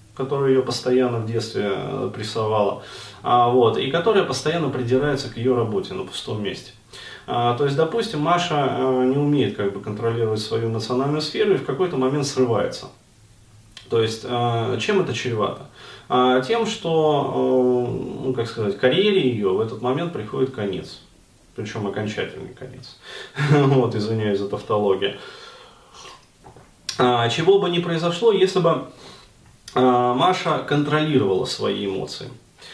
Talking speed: 120 wpm